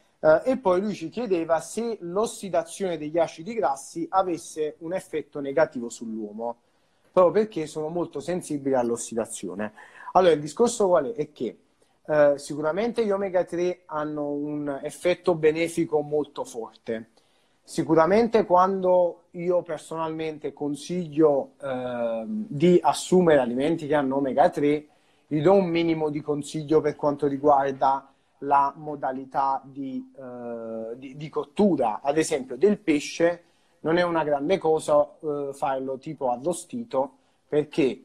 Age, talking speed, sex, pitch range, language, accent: 30-49, 130 wpm, male, 140-175 Hz, Italian, native